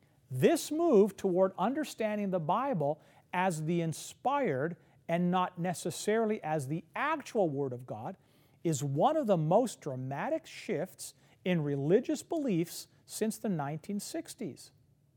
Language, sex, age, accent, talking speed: English, male, 50-69, American, 125 wpm